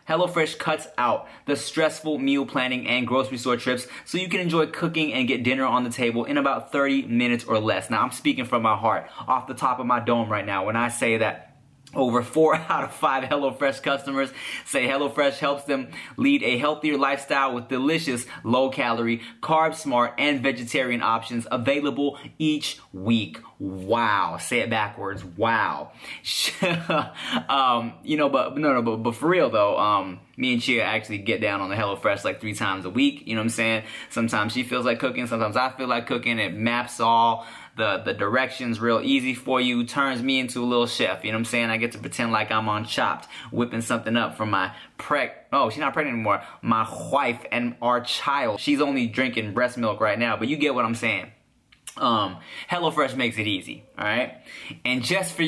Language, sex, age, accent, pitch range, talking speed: English, male, 20-39, American, 115-145 Hz, 200 wpm